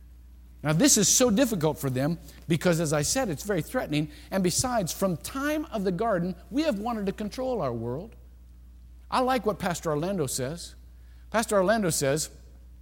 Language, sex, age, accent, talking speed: English, male, 50-69, American, 175 wpm